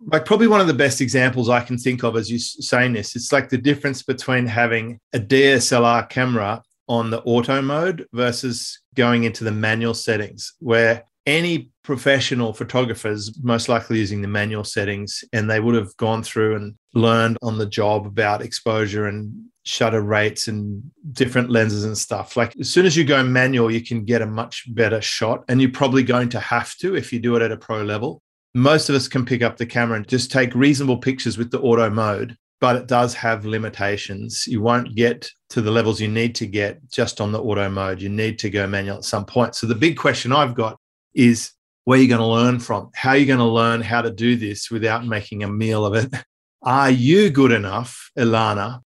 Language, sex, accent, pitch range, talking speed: English, male, Australian, 110-130 Hz, 215 wpm